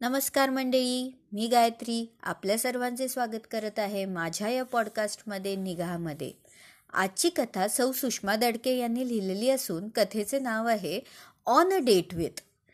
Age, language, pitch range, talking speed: 30-49, Marathi, 195-270 Hz, 125 wpm